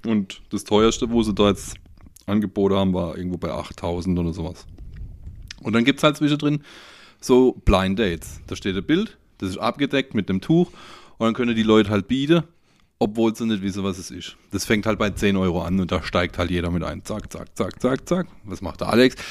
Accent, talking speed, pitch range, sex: German, 220 wpm, 95-130 Hz, male